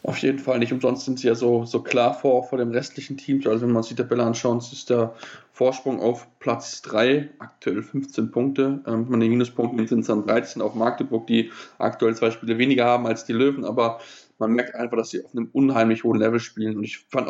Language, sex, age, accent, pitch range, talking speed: German, male, 20-39, German, 120-145 Hz, 230 wpm